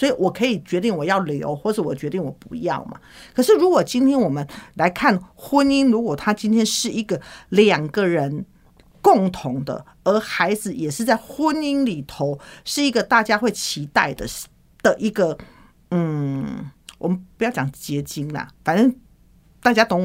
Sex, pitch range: female, 160-245 Hz